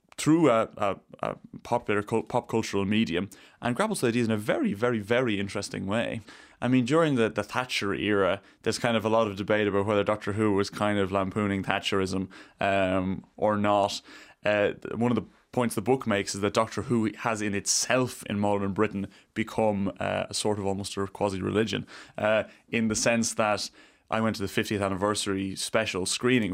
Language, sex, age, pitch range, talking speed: English, male, 20-39, 100-115 Hz, 185 wpm